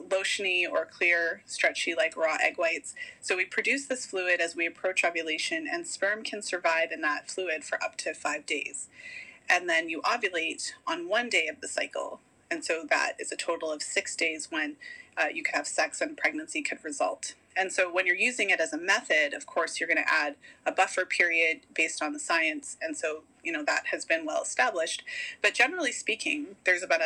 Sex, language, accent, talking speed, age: female, English, American, 210 wpm, 30-49